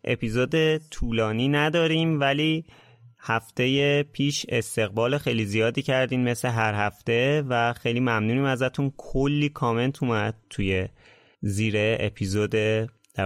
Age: 30-49